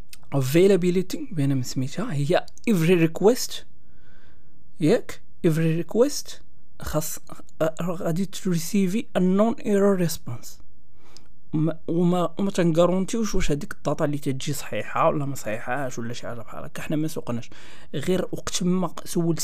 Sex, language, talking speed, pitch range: male, Arabic, 80 wpm, 145-180 Hz